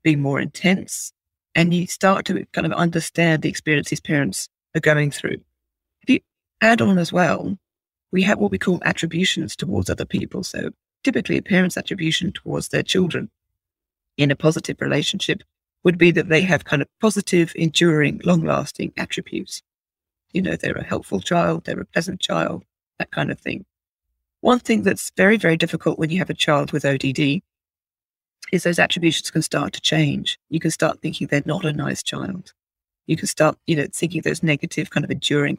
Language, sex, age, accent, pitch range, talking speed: English, female, 40-59, British, 145-180 Hz, 180 wpm